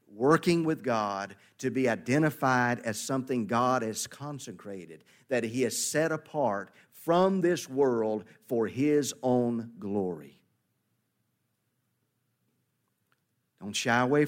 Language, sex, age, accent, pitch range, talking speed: English, male, 40-59, American, 110-150 Hz, 110 wpm